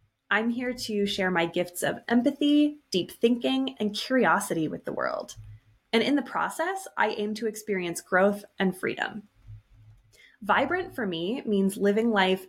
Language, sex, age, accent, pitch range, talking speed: English, female, 20-39, American, 195-245 Hz, 155 wpm